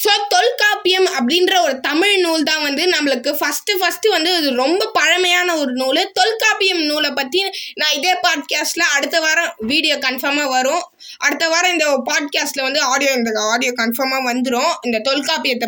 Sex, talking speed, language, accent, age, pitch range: female, 150 wpm, Tamil, native, 20-39, 285-380 Hz